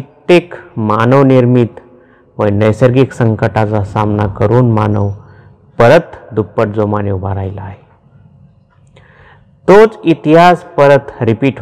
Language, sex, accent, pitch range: Marathi, male, native, 105-130 Hz